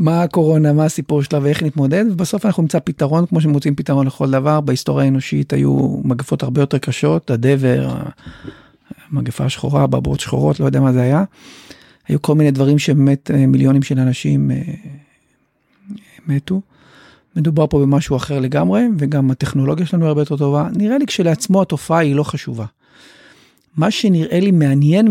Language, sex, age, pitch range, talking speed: Hebrew, male, 50-69, 135-170 Hz, 155 wpm